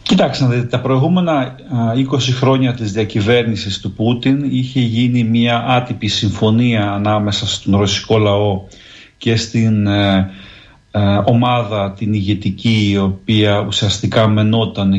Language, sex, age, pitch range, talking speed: Greek, male, 40-59, 105-130 Hz, 110 wpm